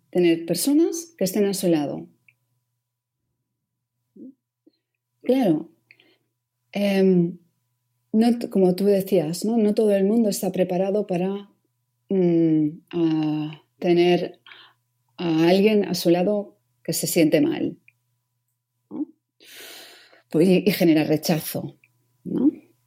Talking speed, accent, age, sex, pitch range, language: 100 wpm, Spanish, 40-59, female, 150-205 Hz, Spanish